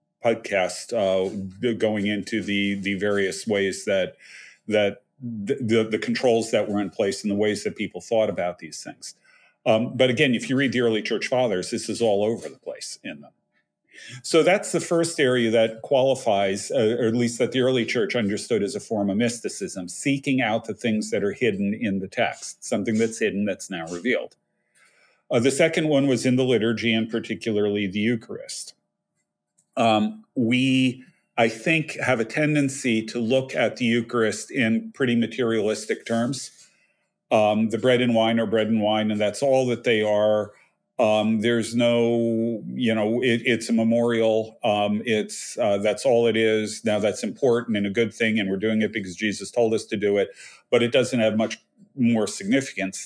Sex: male